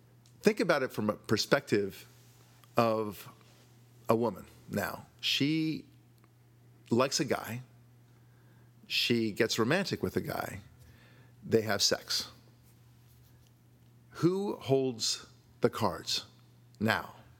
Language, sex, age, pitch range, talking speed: English, male, 50-69, 110-120 Hz, 95 wpm